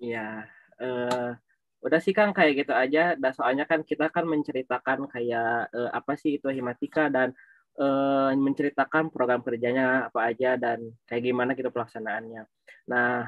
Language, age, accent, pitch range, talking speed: Indonesian, 20-39, native, 130-150 Hz, 150 wpm